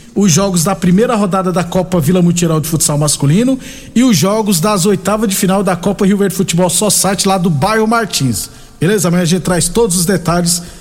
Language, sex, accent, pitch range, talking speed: Portuguese, male, Brazilian, 175-210 Hz, 210 wpm